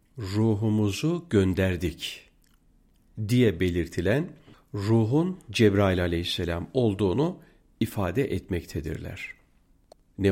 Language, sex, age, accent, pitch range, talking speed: Turkish, male, 50-69, native, 85-125 Hz, 65 wpm